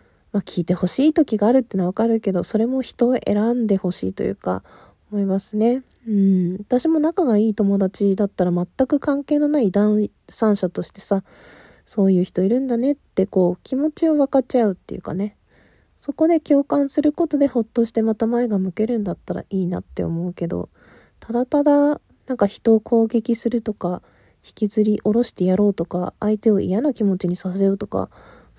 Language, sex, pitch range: Japanese, female, 195-240 Hz